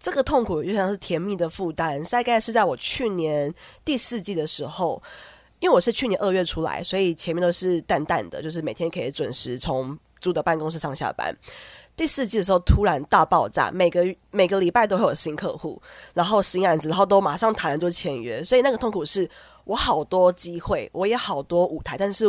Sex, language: female, English